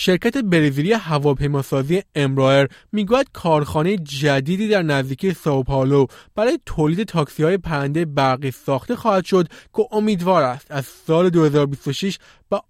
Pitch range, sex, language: 145-195 Hz, male, Persian